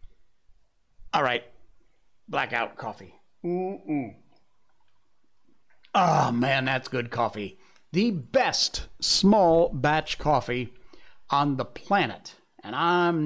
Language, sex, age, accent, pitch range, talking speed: English, male, 60-79, American, 120-165 Hz, 95 wpm